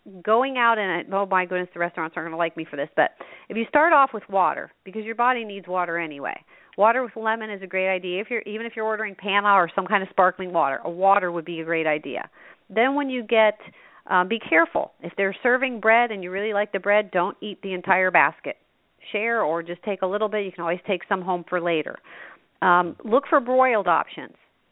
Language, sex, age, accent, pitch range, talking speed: English, female, 40-59, American, 175-220 Hz, 235 wpm